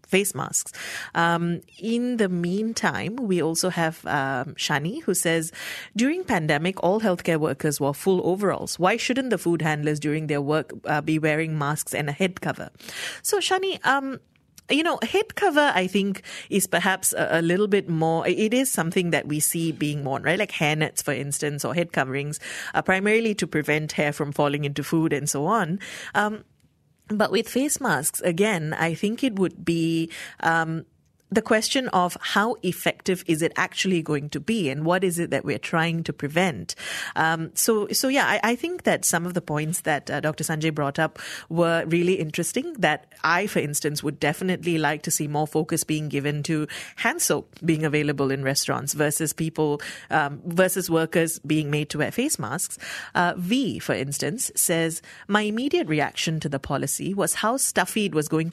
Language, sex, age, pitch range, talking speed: English, female, 30-49, 155-200 Hz, 190 wpm